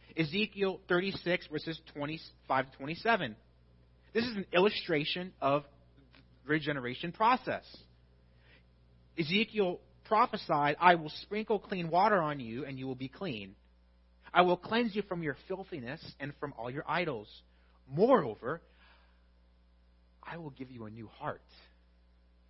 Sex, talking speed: male, 130 wpm